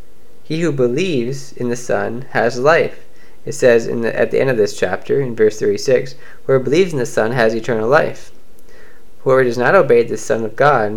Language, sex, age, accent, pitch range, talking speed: English, male, 20-39, American, 125-185 Hz, 190 wpm